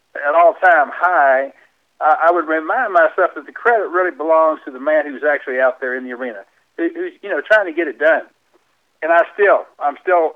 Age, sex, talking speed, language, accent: 60-79, male, 220 wpm, English, American